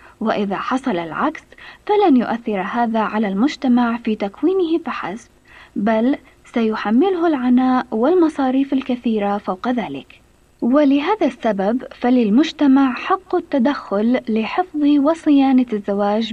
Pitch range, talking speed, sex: 220-290 Hz, 95 wpm, female